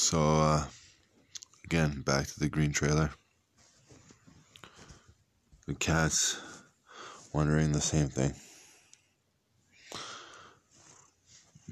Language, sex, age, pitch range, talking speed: Hebrew, male, 20-39, 70-80 Hz, 75 wpm